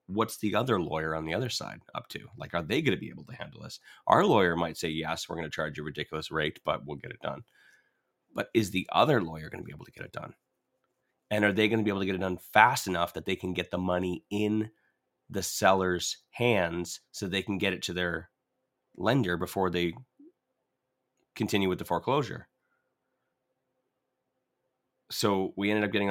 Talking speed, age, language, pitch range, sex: 210 wpm, 30-49, English, 85-115 Hz, male